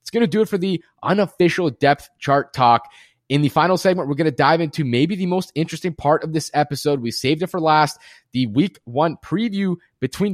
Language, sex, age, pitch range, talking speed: English, male, 20-39, 125-160 Hz, 220 wpm